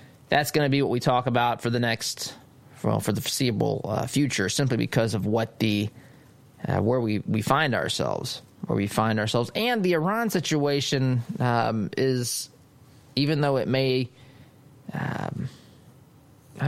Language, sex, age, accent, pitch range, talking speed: English, male, 20-39, American, 115-140 Hz, 155 wpm